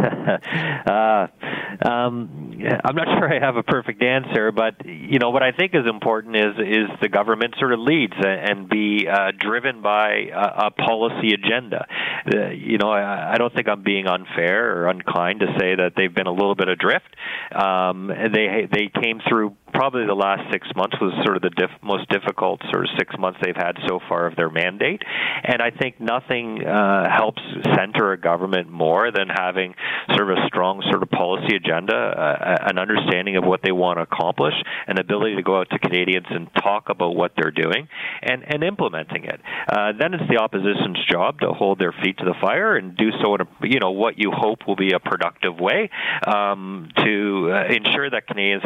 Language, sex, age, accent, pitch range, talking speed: English, male, 40-59, American, 95-110 Hz, 200 wpm